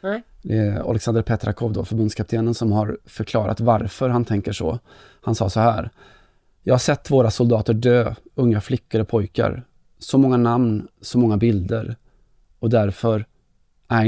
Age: 20-39